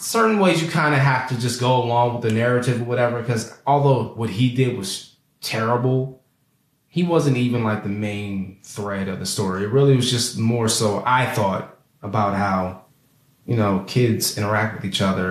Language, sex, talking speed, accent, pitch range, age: English, male, 190 wpm, American, 100-130 Hz, 20-39